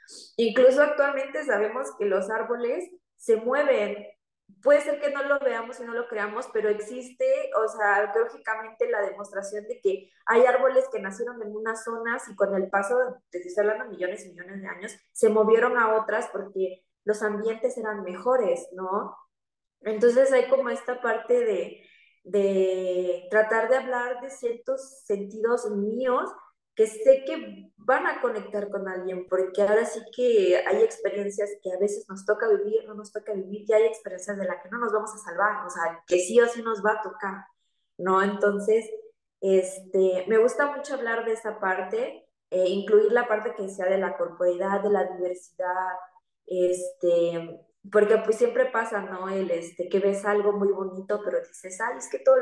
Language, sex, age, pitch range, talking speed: Spanish, female, 20-39, 195-250 Hz, 175 wpm